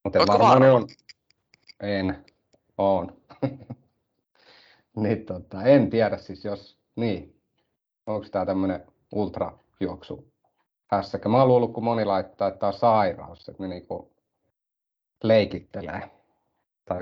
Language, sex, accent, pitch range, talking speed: Finnish, male, native, 95-105 Hz, 105 wpm